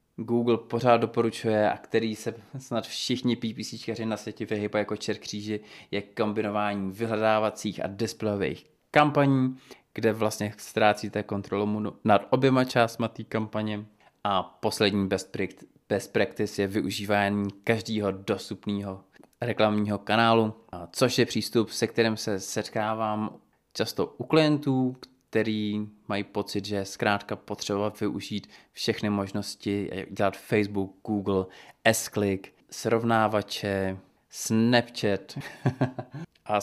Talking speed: 110 wpm